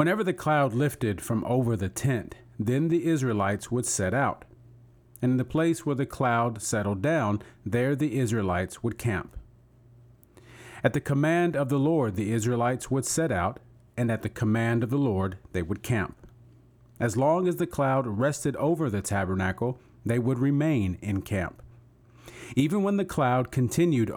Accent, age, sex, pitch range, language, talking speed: American, 40-59, male, 110-140 Hz, English, 170 wpm